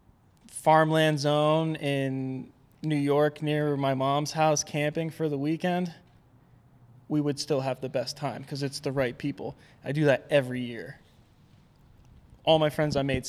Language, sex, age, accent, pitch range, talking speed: English, male, 20-39, American, 130-150 Hz, 160 wpm